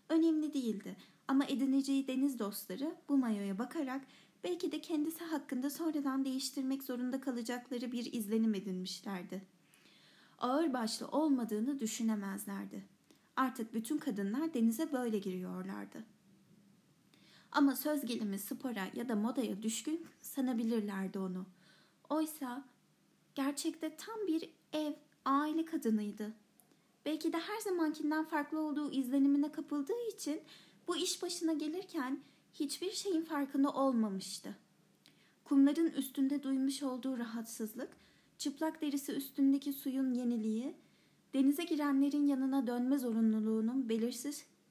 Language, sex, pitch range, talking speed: Turkish, female, 220-295 Hz, 105 wpm